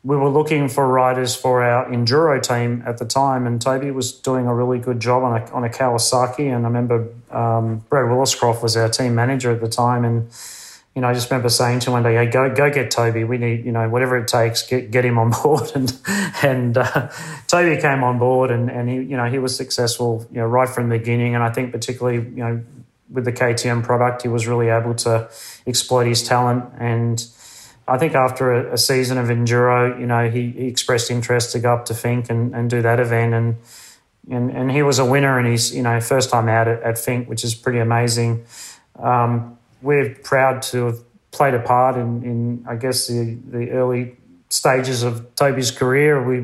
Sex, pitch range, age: male, 120-130 Hz, 30-49